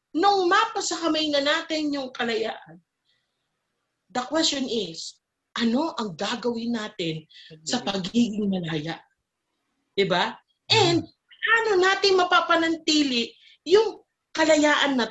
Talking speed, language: 95 wpm, Filipino